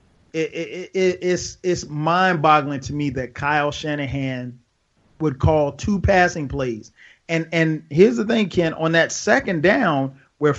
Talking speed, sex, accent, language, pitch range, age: 160 wpm, male, American, English, 140-175 Hz, 30-49